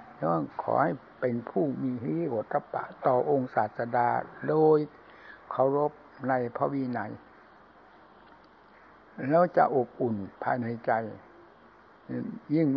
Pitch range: 125-150 Hz